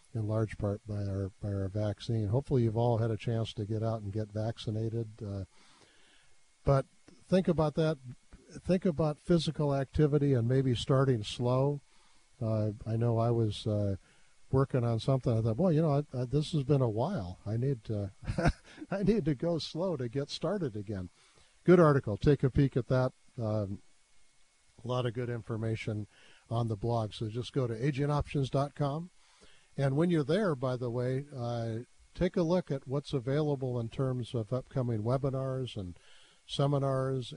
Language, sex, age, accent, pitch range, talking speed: English, male, 50-69, American, 110-140 Hz, 175 wpm